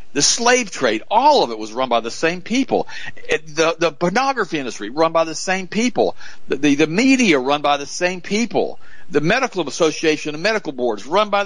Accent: American